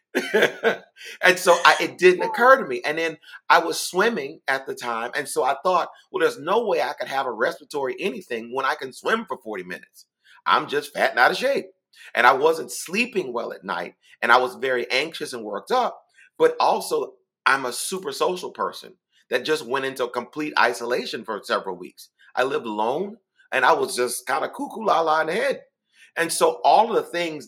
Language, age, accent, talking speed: English, 30-49, American, 205 wpm